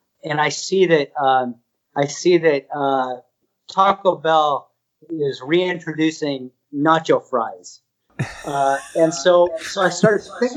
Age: 40-59